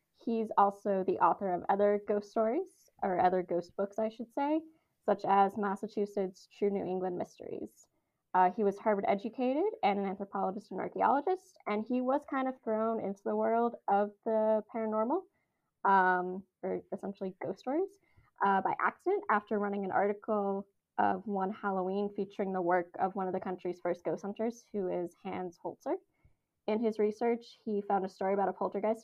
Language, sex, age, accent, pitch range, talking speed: English, female, 20-39, American, 190-225 Hz, 175 wpm